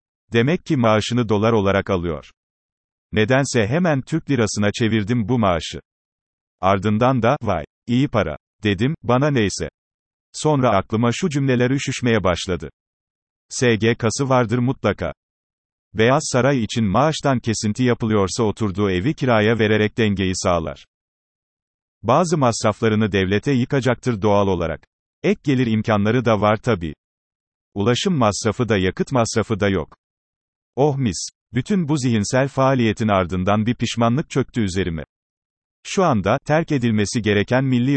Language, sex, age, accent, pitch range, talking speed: Turkish, male, 40-59, native, 100-130 Hz, 125 wpm